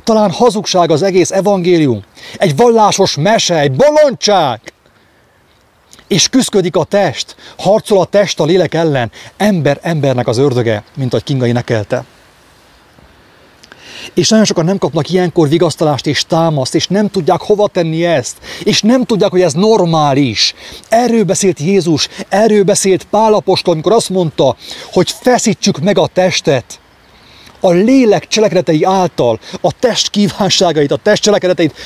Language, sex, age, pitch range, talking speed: English, male, 30-49, 165-215 Hz, 140 wpm